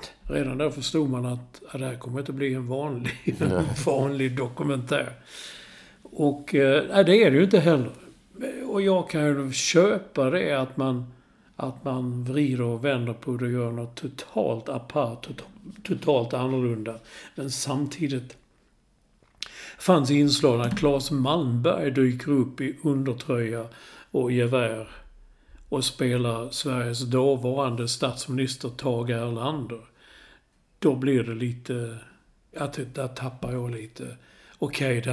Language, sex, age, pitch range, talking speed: English, male, 50-69, 125-145 Hz, 135 wpm